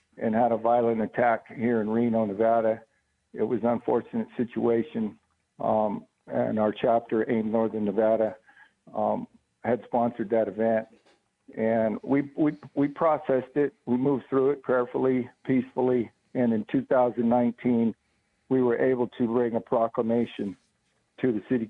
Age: 60-79